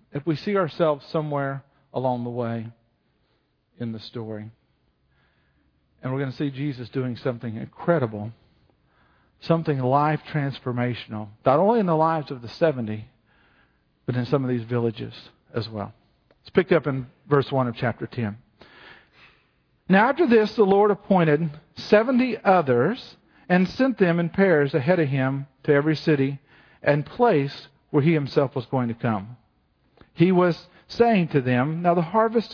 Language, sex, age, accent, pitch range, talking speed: English, male, 50-69, American, 130-190 Hz, 155 wpm